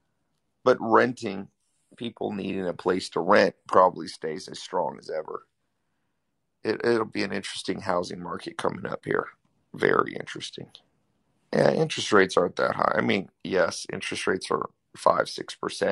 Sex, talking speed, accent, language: male, 145 wpm, American, English